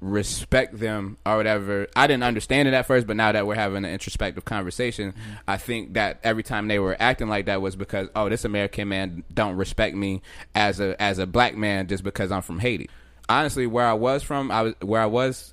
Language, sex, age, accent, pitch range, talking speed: English, male, 20-39, American, 95-115 Hz, 225 wpm